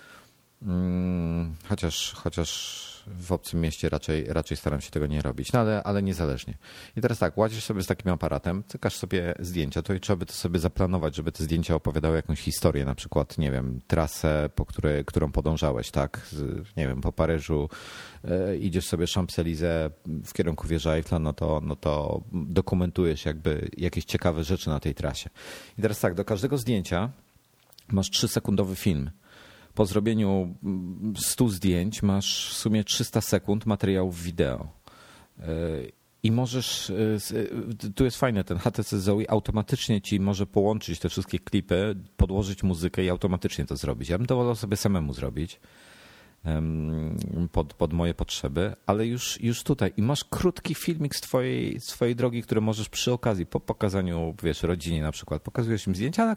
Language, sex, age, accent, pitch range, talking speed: Polish, male, 30-49, native, 80-105 Hz, 165 wpm